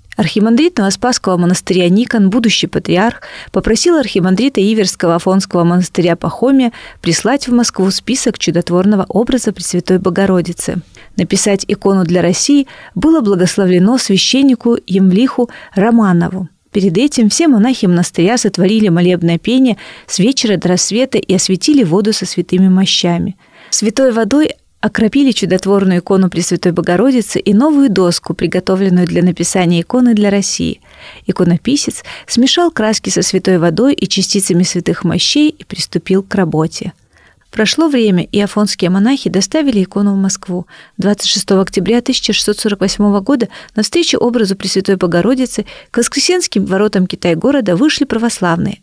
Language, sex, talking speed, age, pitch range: Russian, female, 125 wpm, 30-49, 180-235 Hz